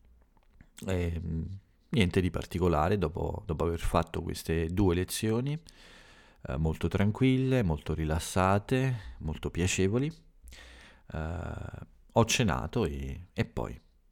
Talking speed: 100 wpm